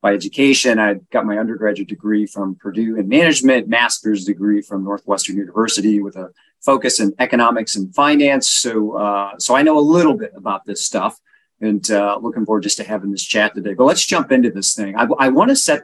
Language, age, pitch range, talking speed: English, 40-59, 105-135 Hz, 210 wpm